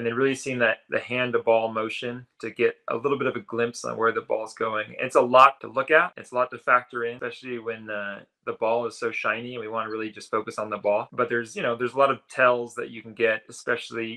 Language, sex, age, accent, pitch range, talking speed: English, male, 20-39, American, 110-125 Hz, 270 wpm